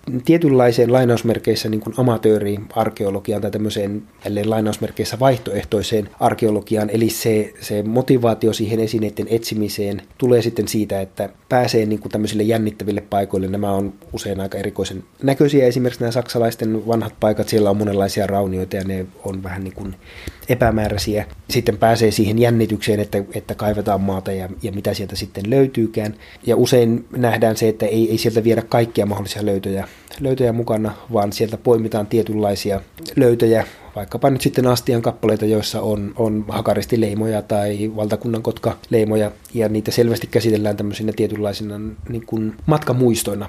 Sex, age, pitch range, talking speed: male, 30-49, 100-115 Hz, 140 wpm